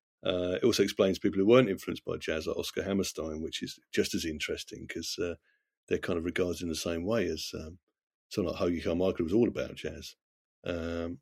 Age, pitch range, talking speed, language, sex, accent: 50-69, 85-115 Hz, 205 wpm, English, male, British